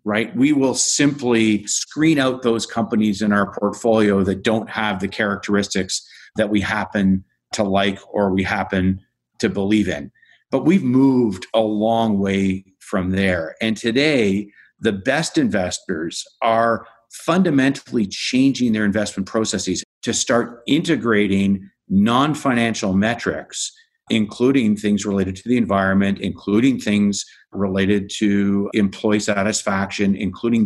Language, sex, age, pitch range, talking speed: English, male, 50-69, 95-115 Hz, 125 wpm